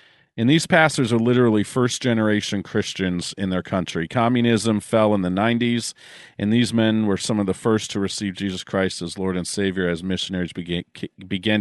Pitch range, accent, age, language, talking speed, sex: 95-115 Hz, American, 40-59, English, 180 wpm, male